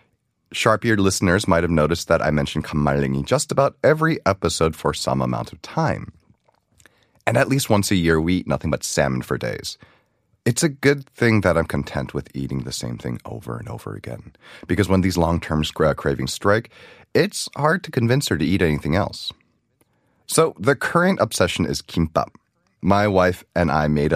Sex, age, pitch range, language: male, 30-49, 75-120 Hz, Korean